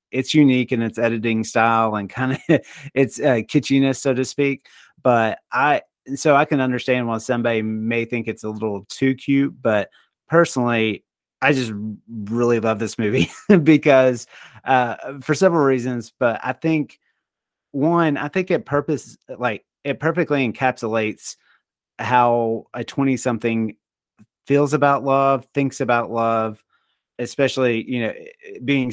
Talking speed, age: 145 wpm, 30-49